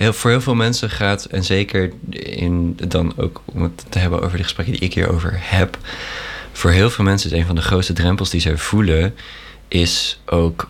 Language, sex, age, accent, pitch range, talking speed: Dutch, male, 20-39, Dutch, 85-100 Hz, 210 wpm